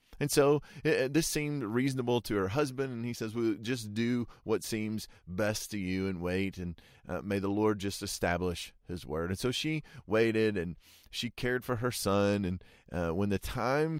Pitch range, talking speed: 90-115 Hz, 200 wpm